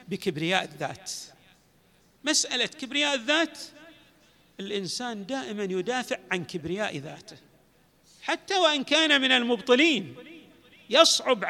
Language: Arabic